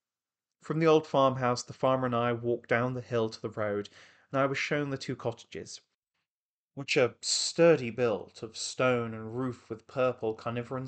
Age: 20-39